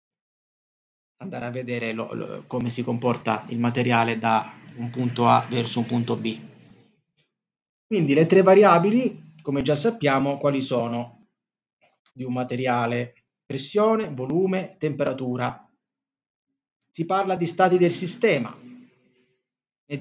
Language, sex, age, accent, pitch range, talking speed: Italian, male, 30-49, native, 125-160 Hz, 120 wpm